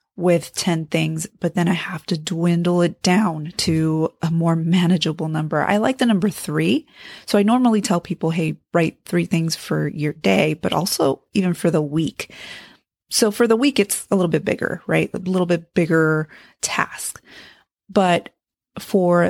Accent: American